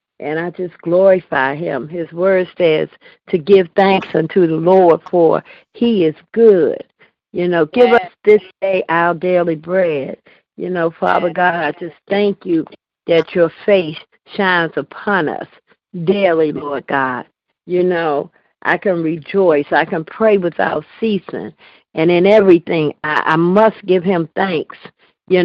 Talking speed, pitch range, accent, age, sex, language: 150 wpm, 165-195 Hz, American, 50-69, female, English